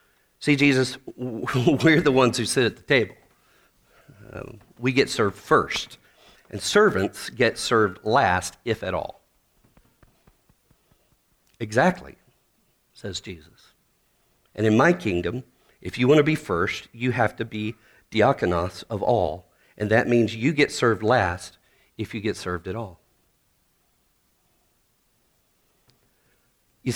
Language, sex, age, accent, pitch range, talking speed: English, male, 50-69, American, 105-135 Hz, 125 wpm